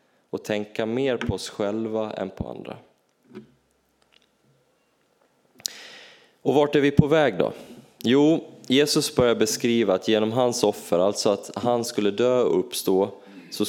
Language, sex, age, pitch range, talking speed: Swedish, male, 20-39, 105-130 Hz, 140 wpm